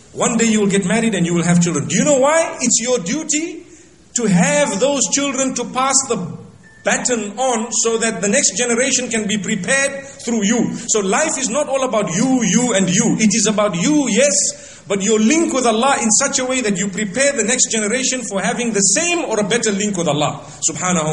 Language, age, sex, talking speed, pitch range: English, 40-59, male, 220 wpm, 190-245 Hz